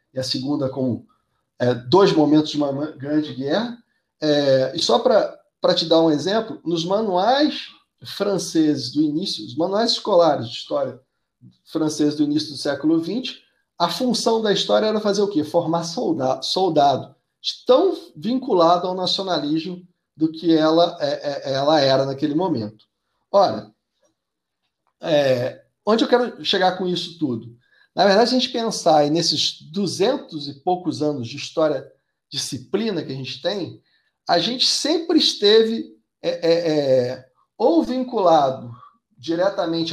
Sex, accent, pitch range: male, Brazilian, 150-215 Hz